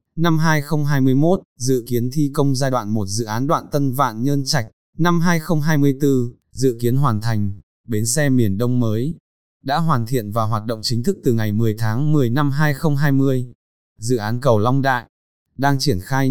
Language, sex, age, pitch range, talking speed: Vietnamese, male, 20-39, 115-145 Hz, 185 wpm